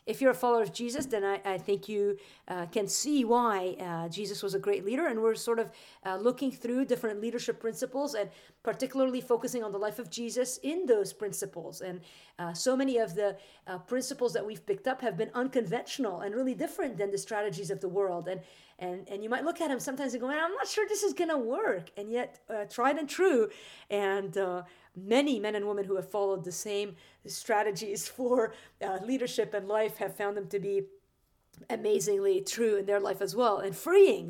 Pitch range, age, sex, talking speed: 200-255 Hz, 40-59, female, 210 wpm